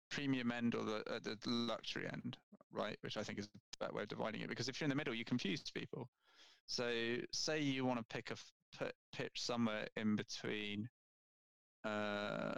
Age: 20-39